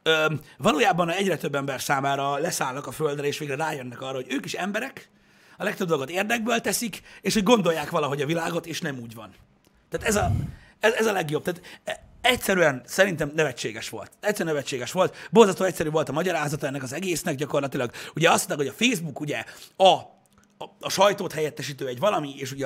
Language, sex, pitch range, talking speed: Hungarian, male, 130-175 Hz, 190 wpm